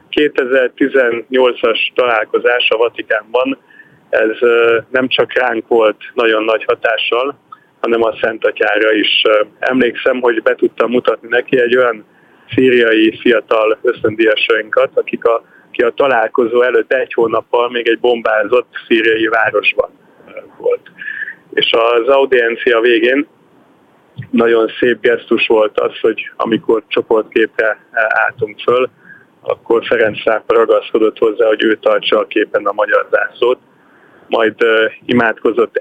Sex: male